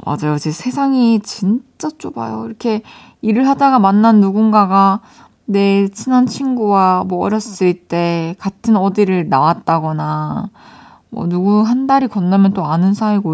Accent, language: native, Korean